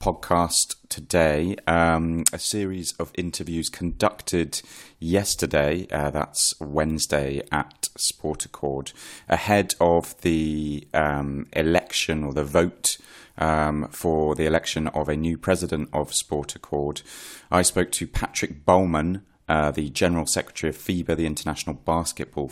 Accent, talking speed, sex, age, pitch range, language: British, 130 wpm, male, 30-49, 75-90 Hz, English